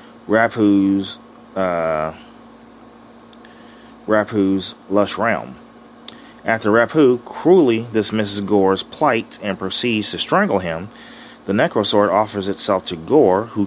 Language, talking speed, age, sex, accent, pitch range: English, 100 wpm, 30-49, male, American, 95-110 Hz